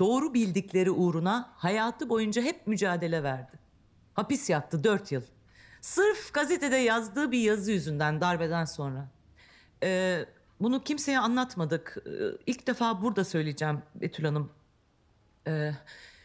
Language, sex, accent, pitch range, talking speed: Turkish, female, native, 155-250 Hz, 115 wpm